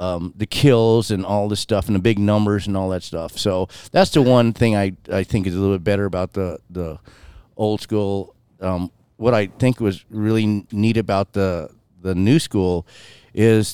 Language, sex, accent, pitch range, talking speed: English, male, American, 100-115 Hz, 200 wpm